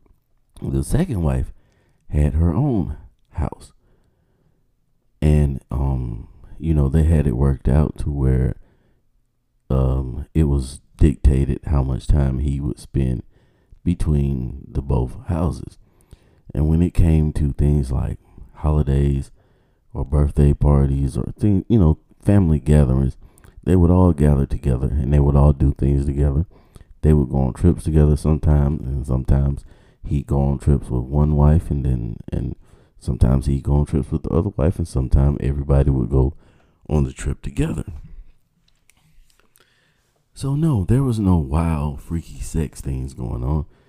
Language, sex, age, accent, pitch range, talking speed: English, male, 40-59, American, 70-85 Hz, 150 wpm